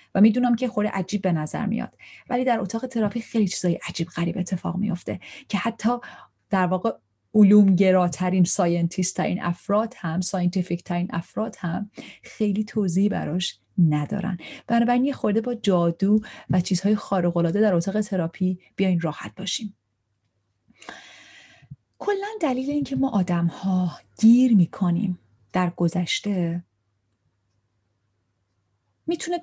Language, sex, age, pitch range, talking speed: Persian, female, 30-49, 175-235 Hz, 120 wpm